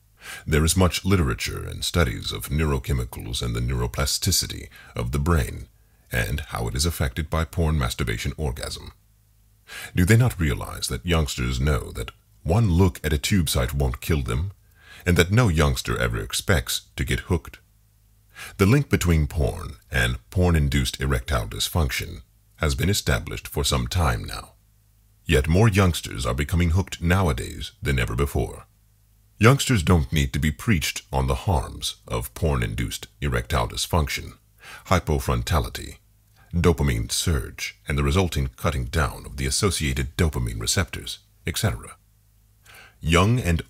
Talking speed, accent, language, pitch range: 140 wpm, American, English, 70-100 Hz